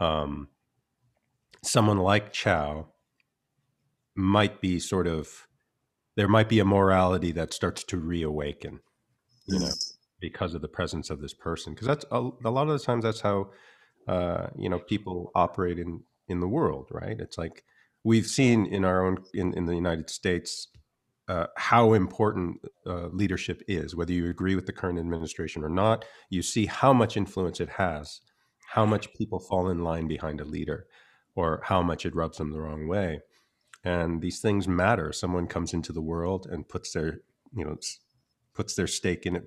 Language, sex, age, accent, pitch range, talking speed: English, male, 40-59, American, 85-105 Hz, 180 wpm